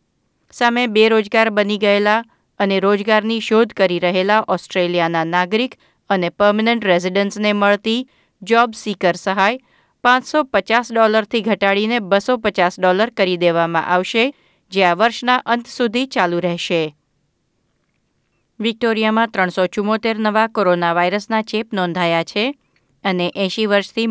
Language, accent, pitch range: Gujarati, native, 180-225 Hz